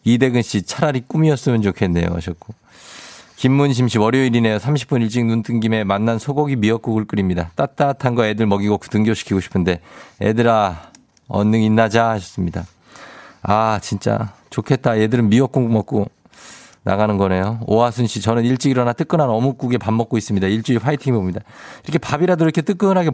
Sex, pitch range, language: male, 105-135 Hz, Korean